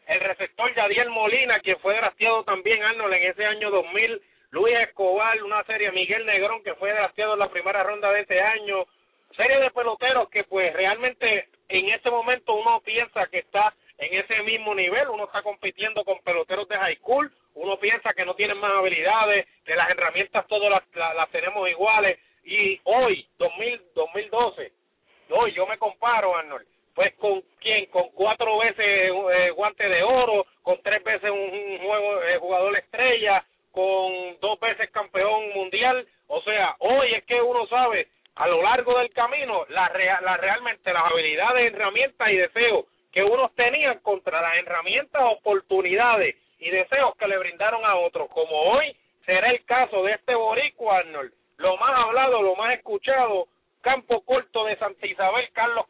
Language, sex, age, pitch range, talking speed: English, male, 40-59, 195-250 Hz, 170 wpm